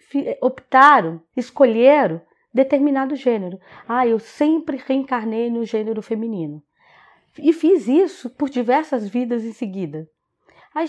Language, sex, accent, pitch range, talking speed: Portuguese, female, Brazilian, 225-295 Hz, 110 wpm